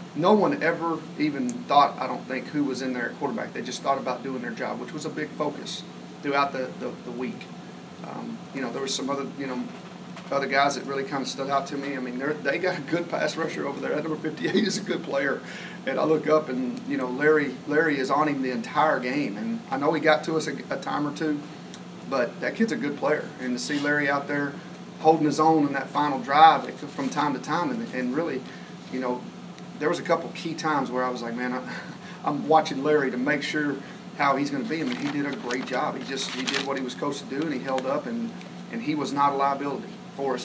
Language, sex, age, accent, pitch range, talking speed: English, male, 40-59, American, 135-160 Hz, 260 wpm